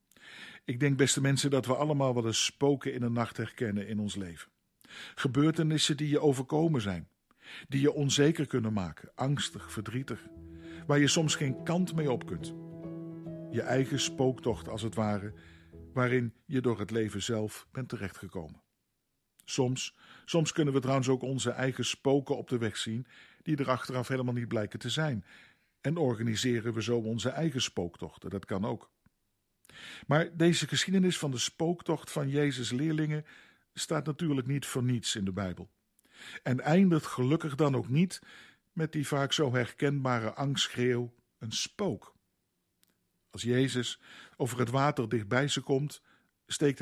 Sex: male